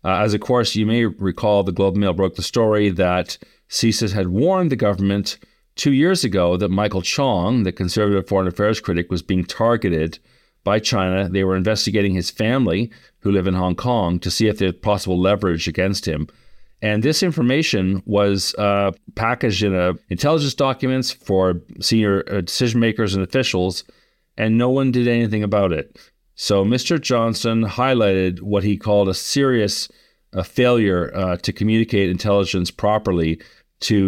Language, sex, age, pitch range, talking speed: English, male, 40-59, 95-110 Hz, 165 wpm